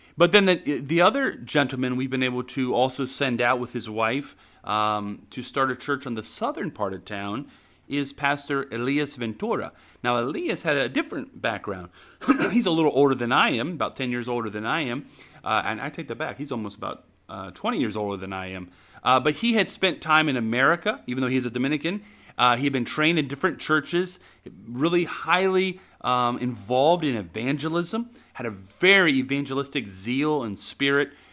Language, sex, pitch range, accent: English, male, 125-165 Hz, American